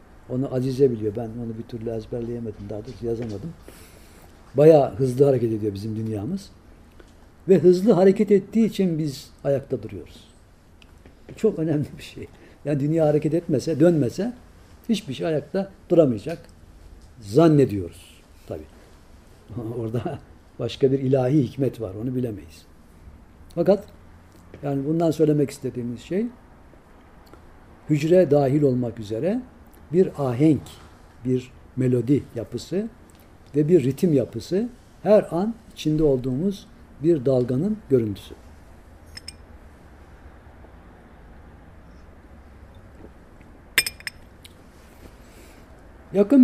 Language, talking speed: Turkish, 100 wpm